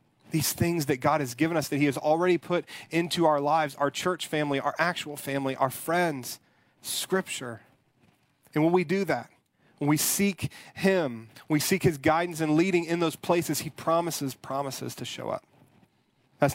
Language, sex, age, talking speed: English, male, 40-59, 180 wpm